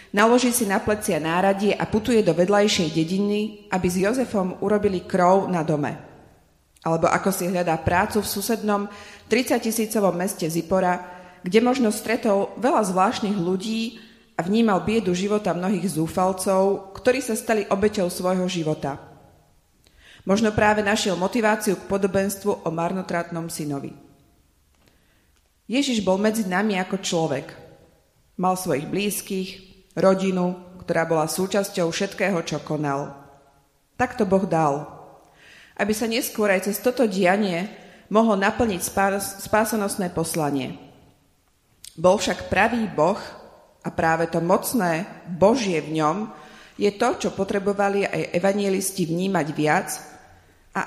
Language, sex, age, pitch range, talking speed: Slovak, female, 30-49, 170-205 Hz, 125 wpm